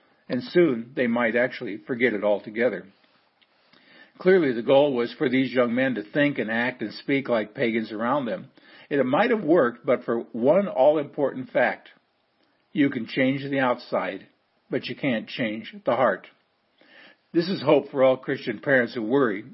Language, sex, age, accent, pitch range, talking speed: English, male, 60-79, American, 115-140 Hz, 170 wpm